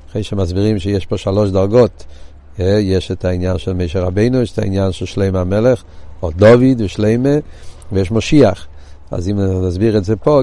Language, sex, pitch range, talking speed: Hebrew, male, 95-125 Hz, 160 wpm